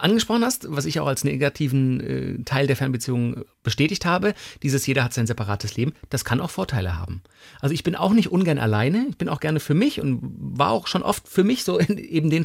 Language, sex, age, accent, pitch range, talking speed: German, male, 40-59, German, 115-145 Hz, 225 wpm